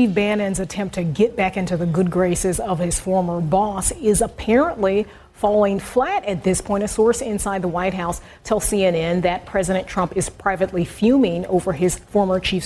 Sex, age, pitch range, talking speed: female, 30-49, 180-215 Hz, 185 wpm